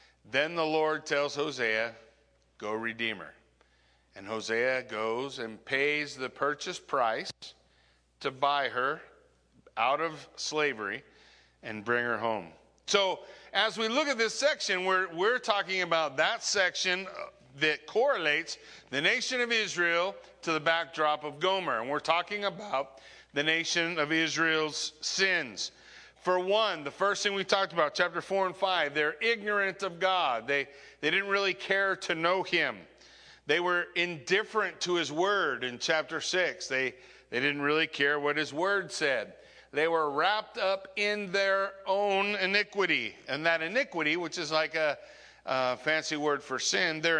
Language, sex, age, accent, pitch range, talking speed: English, male, 50-69, American, 140-190 Hz, 155 wpm